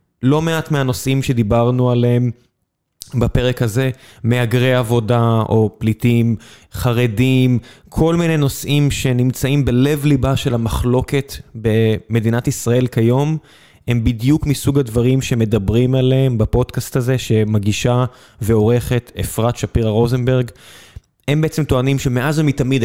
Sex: male